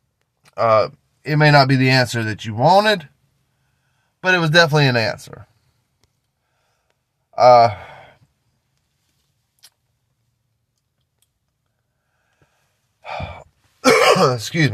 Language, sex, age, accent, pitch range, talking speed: English, male, 20-39, American, 120-155 Hz, 75 wpm